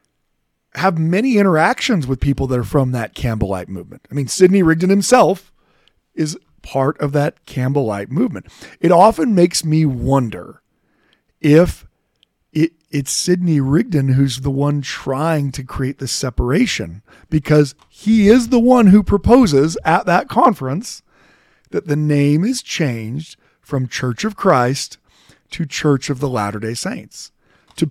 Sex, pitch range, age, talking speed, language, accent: male, 130-165 Hz, 40-59, 140 wpm, English, American